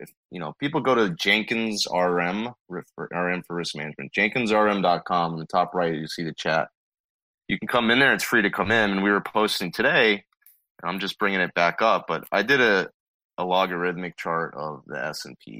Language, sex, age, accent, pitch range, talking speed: English, male, 20-39, American, 80-95 Hz, 200 wpm